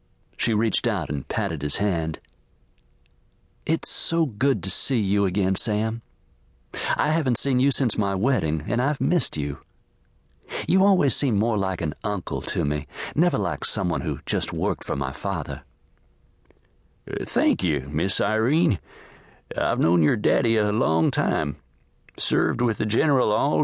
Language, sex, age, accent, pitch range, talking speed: English, male, 60-79, American, 75-115 Hz, 150 wpm